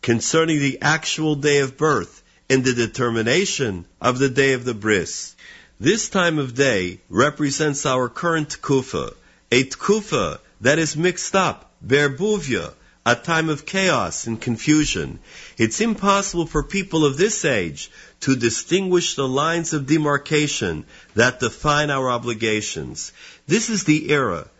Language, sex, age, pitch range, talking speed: English, male, 50-69, 130-170 Hz, 140 wpm